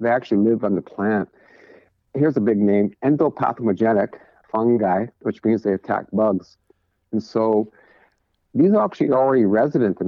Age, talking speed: 50-69, 150 wpm